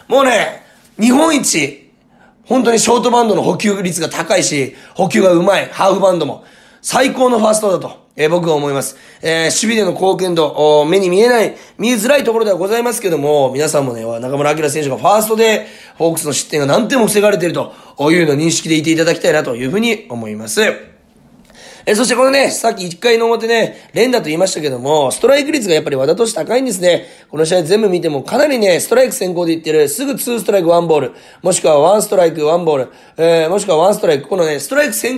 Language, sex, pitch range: Japanese, male, 160-245 Hz